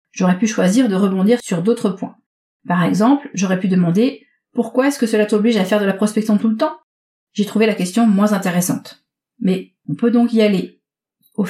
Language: French